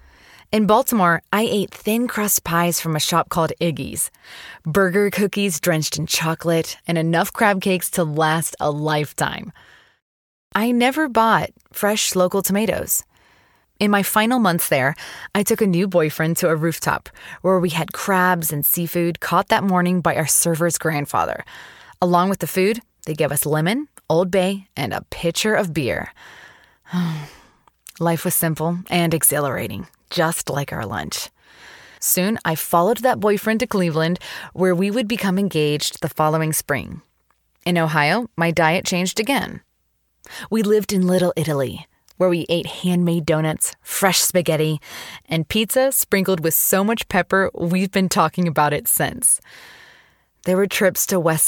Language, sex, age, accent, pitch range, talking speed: English, female, 20-39, American, 160-200 Hz, 155 wpm